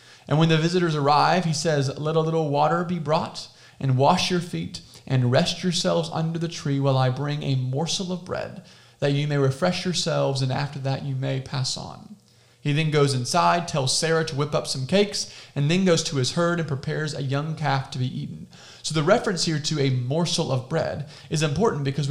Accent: American